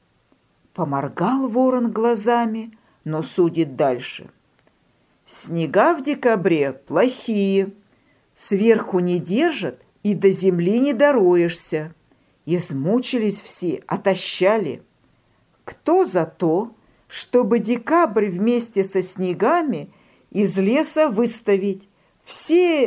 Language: Russian